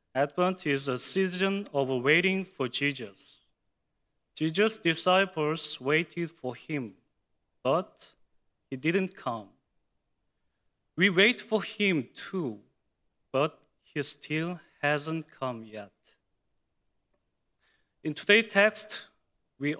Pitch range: 130-185 Hz